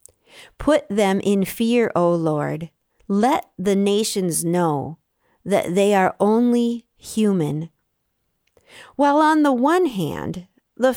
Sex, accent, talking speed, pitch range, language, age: female, American, 115 wpm, 175-240 Hz, English, 50-69